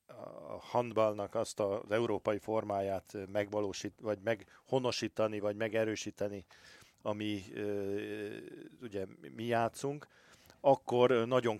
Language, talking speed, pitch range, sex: Hungarian, 90 wpm, 95-110 Hz, male